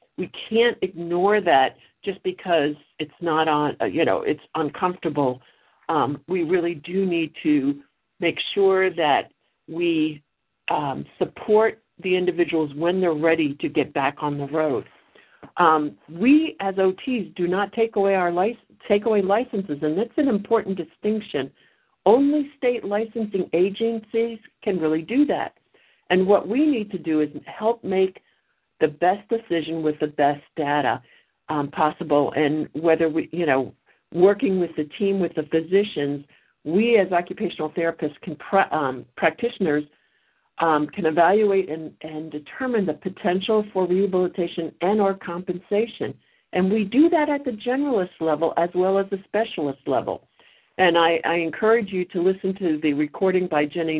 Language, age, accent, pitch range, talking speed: English, 50-69, American, 155-205 Hz, 155 wpm